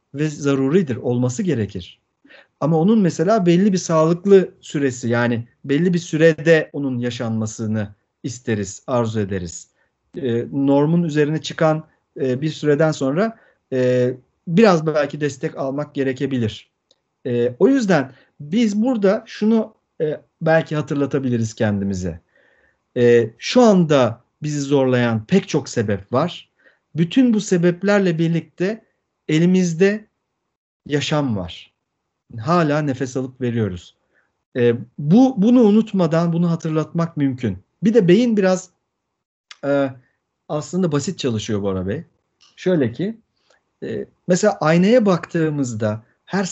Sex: male